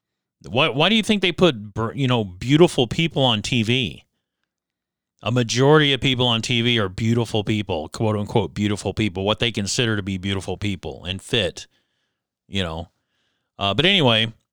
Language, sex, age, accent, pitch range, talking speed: English, male, 40-59, American, 105-130 Hz, 165 wpm